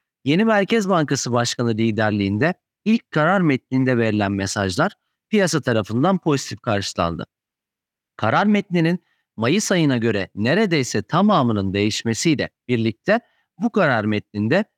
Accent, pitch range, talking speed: native, 125-190 Hz, 105 wpm